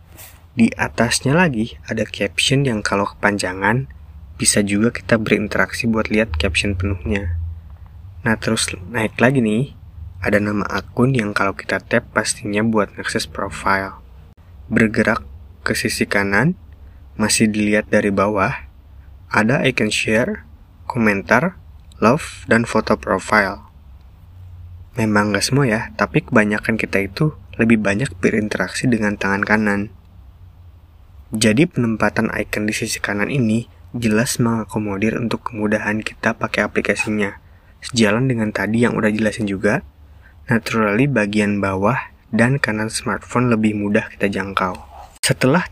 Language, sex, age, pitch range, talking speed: Indonesian, male, 20-39, 90-110 Hz, 125 wpm